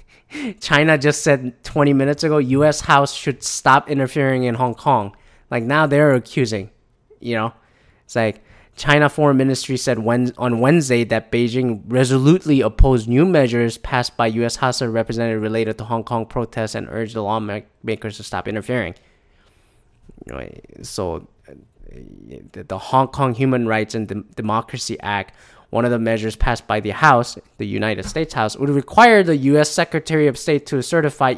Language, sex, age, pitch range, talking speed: English, male, 20-39, 115-145 Hz, 155 wpm